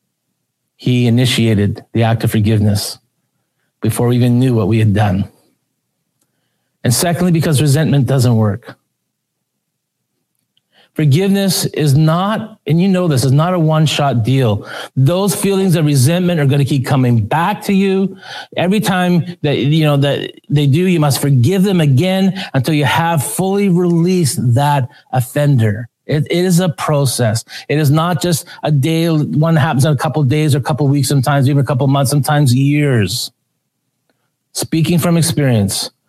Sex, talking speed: male, 165 wpm